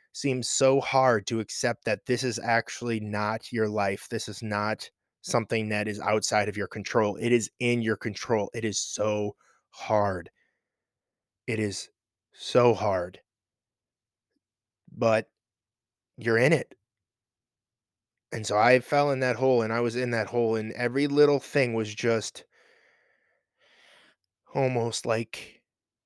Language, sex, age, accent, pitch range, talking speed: English, male, 20-39, American, 110-140 Hz, 140 wpm